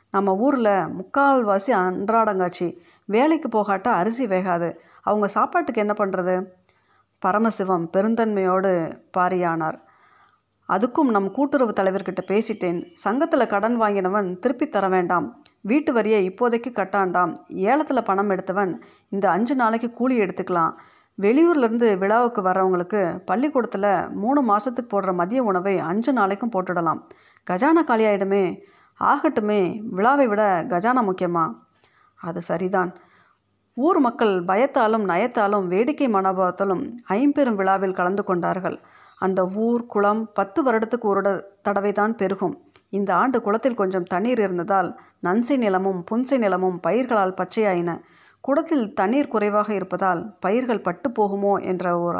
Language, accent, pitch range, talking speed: Tamil, native, 185-235 Hz, 110 wpm